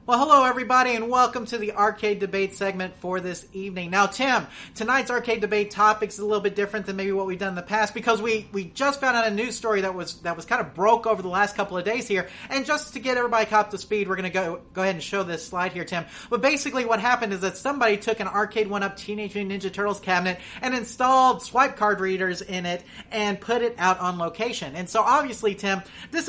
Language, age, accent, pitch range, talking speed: English, 30-49, American, 190-235 Hz, 250 wpm